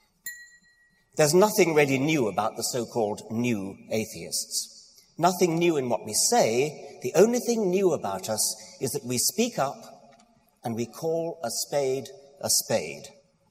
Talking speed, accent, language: 145 wpm, British, English